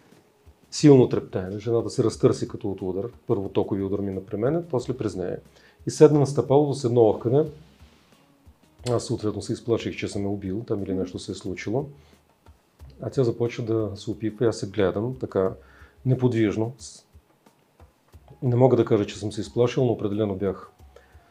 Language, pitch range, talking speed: Bulgarian, 100-125 Hz, 170 wpm